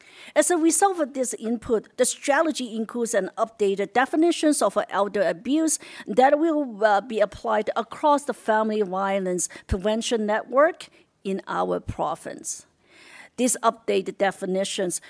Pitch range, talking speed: 195-275 Hz, 125 wpm